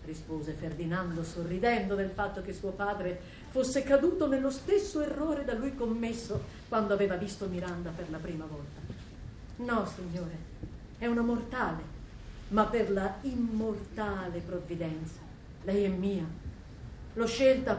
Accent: native